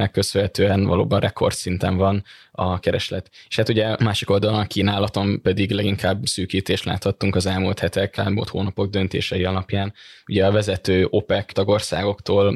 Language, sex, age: Hungarian, male, 20-39